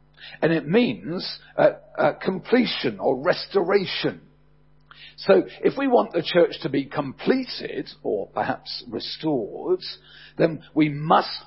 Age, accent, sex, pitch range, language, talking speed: 50-69, British, male, 145-235 Hz, English, 120 wpm